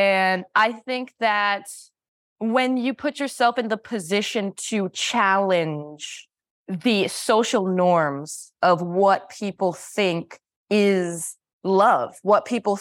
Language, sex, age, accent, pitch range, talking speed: English, female, 20-39, American, 180-225 Hz, 110 wpm